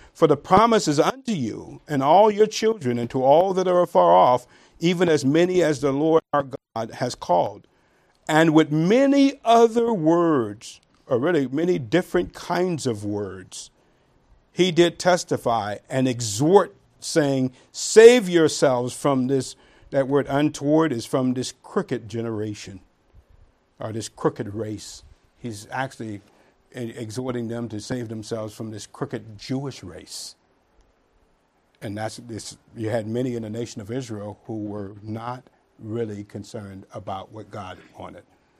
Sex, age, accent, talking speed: male, 50-69, American, 145 wpm